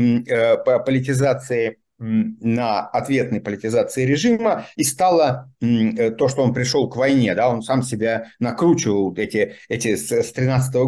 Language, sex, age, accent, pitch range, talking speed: Russian, male, 50-69, native, 120-160 Hz, 125 wpm